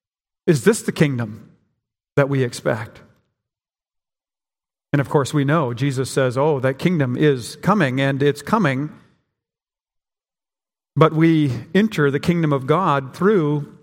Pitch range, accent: 140-180 Hz, American